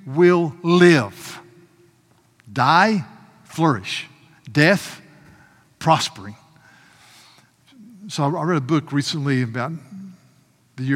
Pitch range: 120-150 Hz